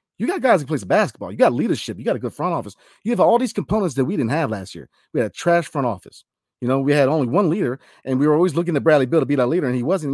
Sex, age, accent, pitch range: male, 30-49, American, 115-165 Hz